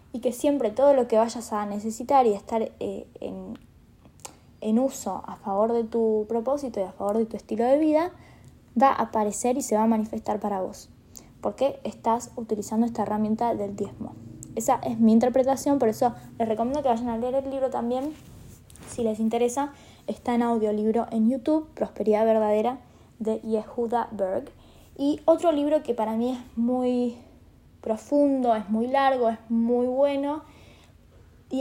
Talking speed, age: 170 wpm, 20-39